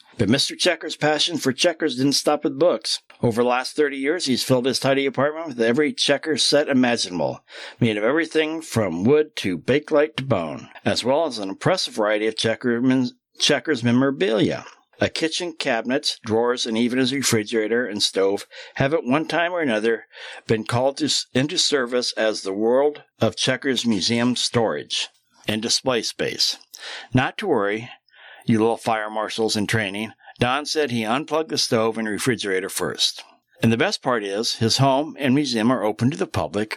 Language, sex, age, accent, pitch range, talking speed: English, male, 60-79, American, 110-145 Hz, 170 wpm